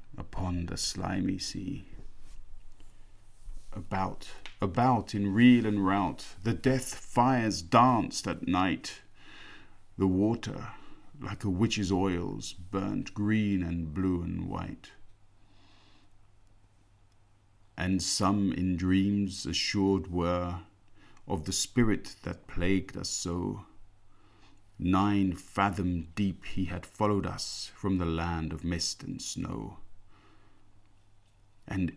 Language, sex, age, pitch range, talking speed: English, male, 50-69, 95-100 Hz, 105 wpm